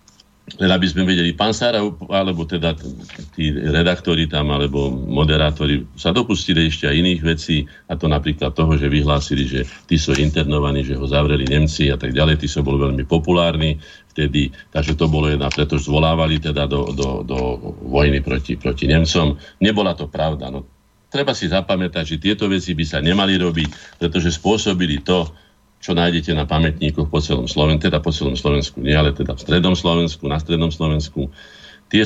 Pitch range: 70-85 Hz